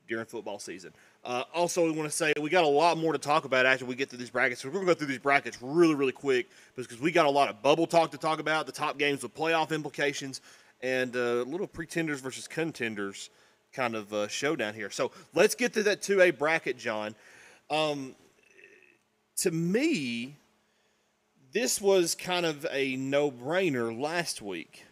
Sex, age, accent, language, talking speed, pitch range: male, 30-49, American, English, 200 wpm, 130-165 Hz